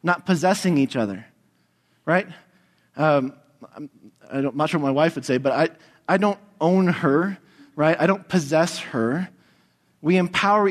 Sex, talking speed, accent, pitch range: male, 165 wpm, American, 120-165 Hz